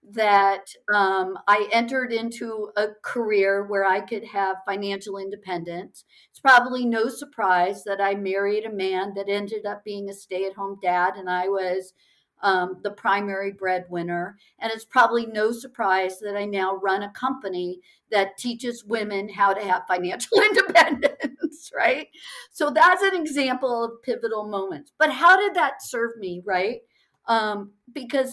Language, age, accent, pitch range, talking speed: English, 50-69, American, 195-250 Hz, 155 wpm